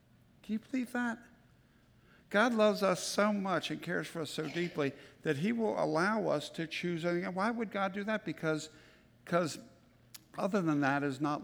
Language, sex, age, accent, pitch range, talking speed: English, male, 60-79, American, 165-210 Hz, 185 wpm